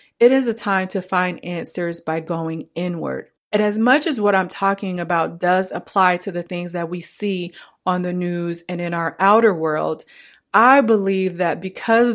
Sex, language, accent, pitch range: female, English, American, 170-200 Hz